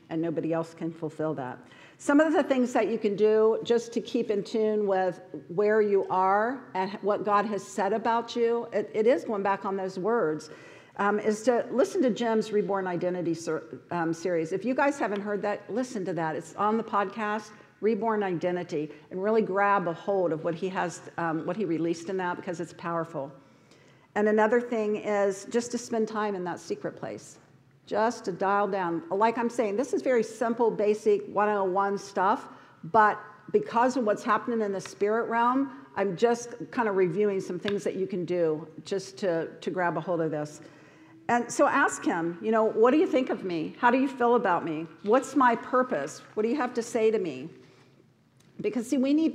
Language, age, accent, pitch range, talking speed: English, 50-69, American, 175-230 Hz, 210 wpm